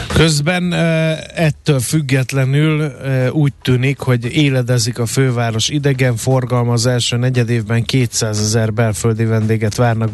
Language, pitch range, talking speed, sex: Hungarian, 115-135 Hz, 115 wpm, male